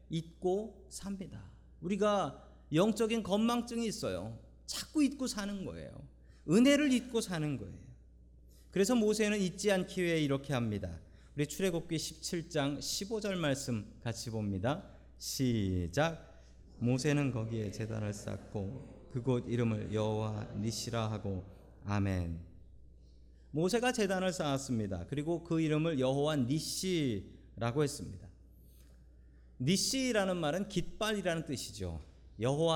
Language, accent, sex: Korean, native, male